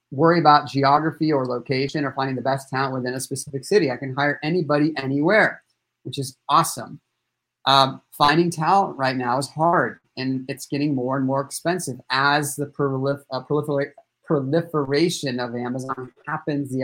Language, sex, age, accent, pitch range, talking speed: English, male, 30-49, American, 135-155 Hz, 155 wpm